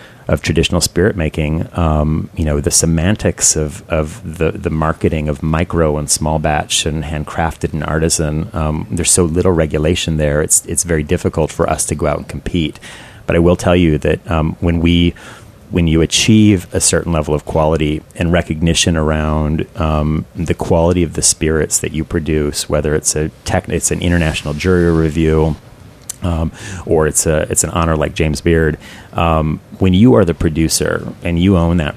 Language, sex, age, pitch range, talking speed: English, male, 30-49, 75-90 Hz, 180 wpm